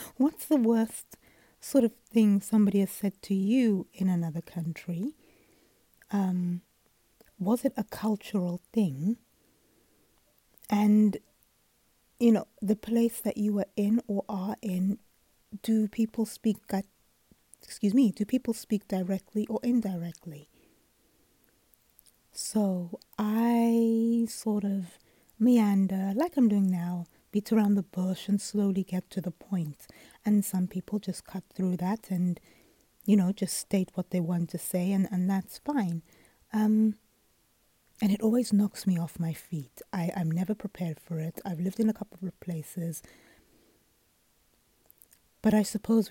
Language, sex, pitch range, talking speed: English, female, 180-215 Hz, 140 wpm